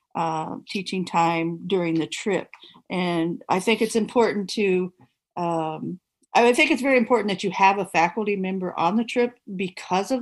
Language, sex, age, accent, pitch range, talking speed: English, female, 50-69, American, 180-230 Hz, 170 wpm